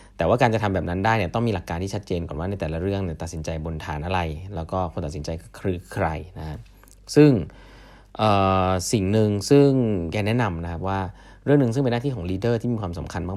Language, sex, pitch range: Thai, male, 85-115 Hz